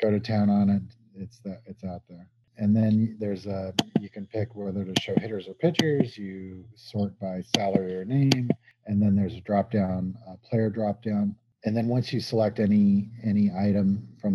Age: 40-59